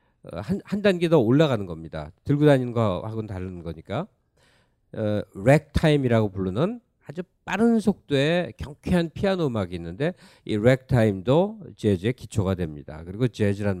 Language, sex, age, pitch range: Korean, male, 50-69, 105-155 Hz